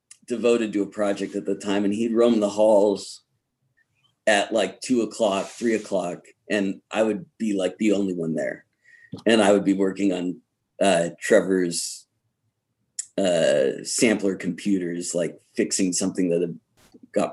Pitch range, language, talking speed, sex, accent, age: 100-120 Hz, English, 150 wpm, male, American, 40-59